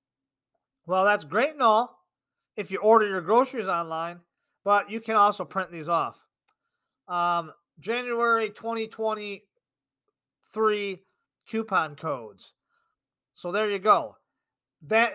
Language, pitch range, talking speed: English, 170-220 Hz, 110 wpm